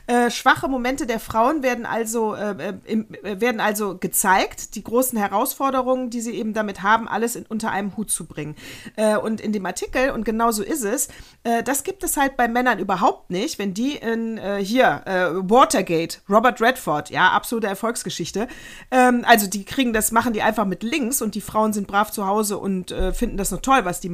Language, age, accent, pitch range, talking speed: German, 40-59, German, 200-255 Hz, 200 wpm